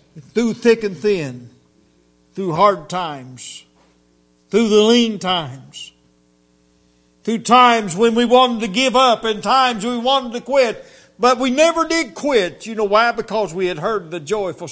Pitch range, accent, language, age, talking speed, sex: 150-245 Hz, American, English, 60-79, 160 wpm, male